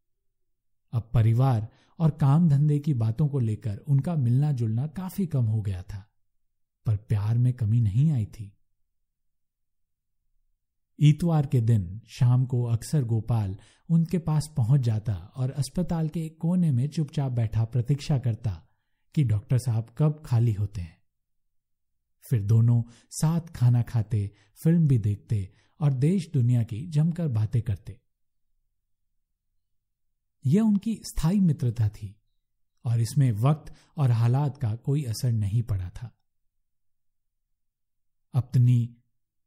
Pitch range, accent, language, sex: 105-140 Hz, native, Hindi, male